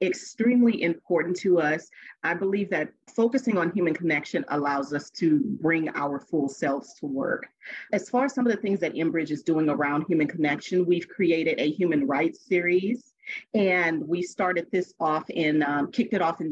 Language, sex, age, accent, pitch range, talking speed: English, female, 40-59, American, 160-200 Hz, 185 wpm